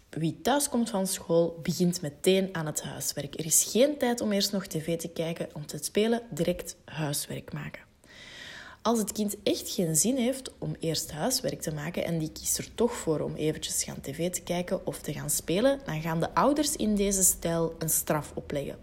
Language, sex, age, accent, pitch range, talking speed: Dutch, female, 20-39, Belgian, 160-205 Hz, 200 wpm